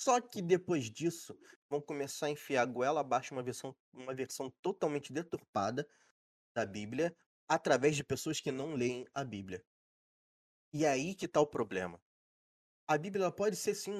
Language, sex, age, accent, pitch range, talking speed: Portuguese, male, 20-39, Brazilian, 125-175 Hz, 165 wpm